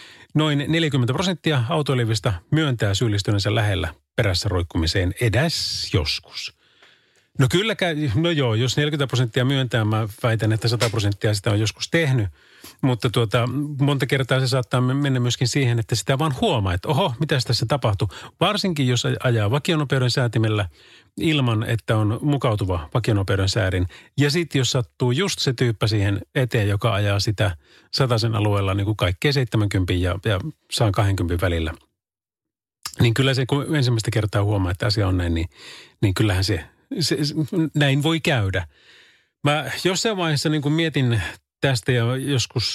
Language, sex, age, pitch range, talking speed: Finnish, male, 30-49, 105-140 Hz, 150 wpm